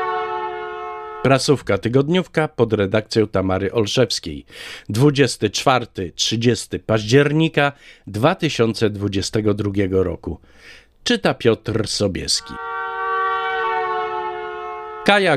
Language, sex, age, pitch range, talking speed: Polish, male, 50-69, 95-130 Hz, 55 wpm